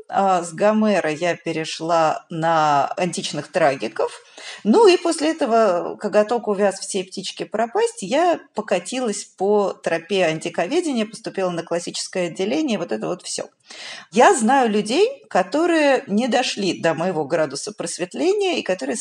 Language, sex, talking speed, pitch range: Russian, female, 135 wpm, 180-240 Hz